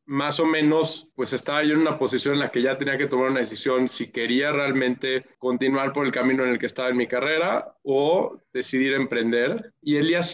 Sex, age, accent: male, 20-39, Mexican